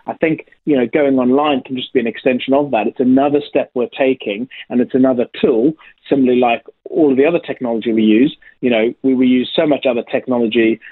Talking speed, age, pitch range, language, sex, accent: 220 wpm, 30-49, 115-135 Hz, English, male, British